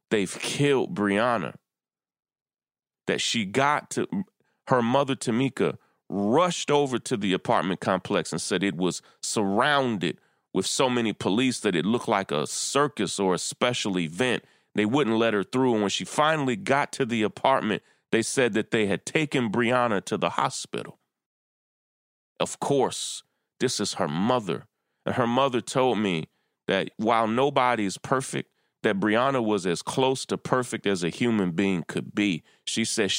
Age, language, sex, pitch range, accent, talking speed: 30-49, English, male, 100-130 Hz, American, 160 wpm